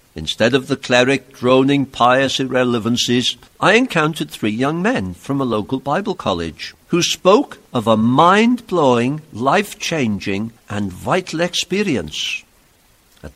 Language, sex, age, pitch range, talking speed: English, male, 60-79, 100-140 Hz, 120 wpm